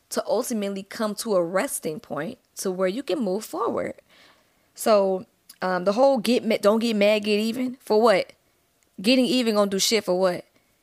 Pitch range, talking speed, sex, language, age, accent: 185-215 Hz, 185 wpm, female, English, 20-39, American